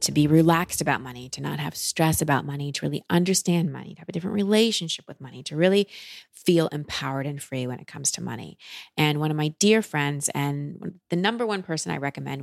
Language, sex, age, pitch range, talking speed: English, female, 30-49, 145-185 Hz, 220 wpm